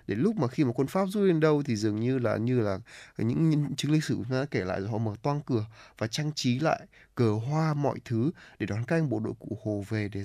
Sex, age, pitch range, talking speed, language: male, 20-39, 110-135 Hz, 285 wpm, Vietnamese